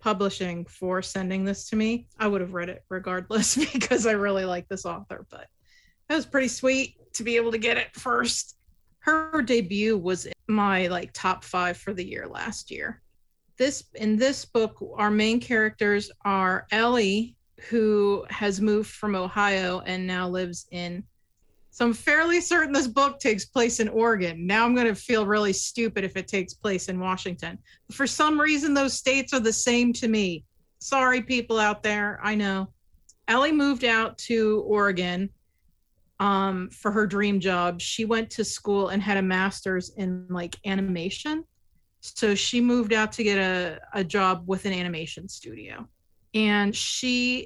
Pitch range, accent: 190-235 Hz, American